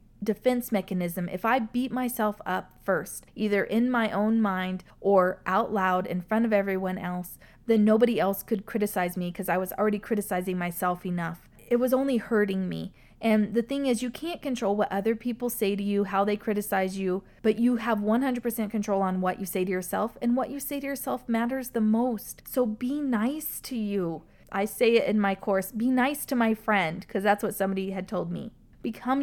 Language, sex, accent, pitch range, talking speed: English, female, American, 195-245 Hz, 205 wpm